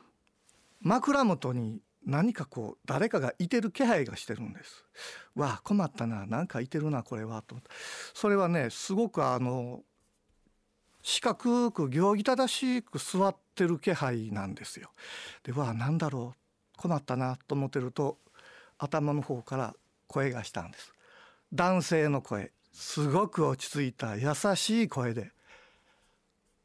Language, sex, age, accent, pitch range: Japanese, male, 50-69, native, 125-200 Hz